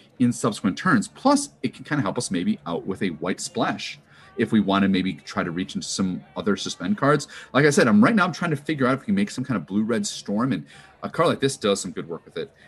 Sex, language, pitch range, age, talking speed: male, English, 100-150 Hz, 40-59, 290 wpm